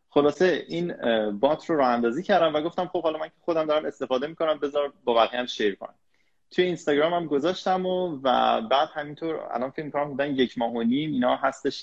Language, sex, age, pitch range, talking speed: Persian, male, 20-39, 110-140 Hz, 210 wpm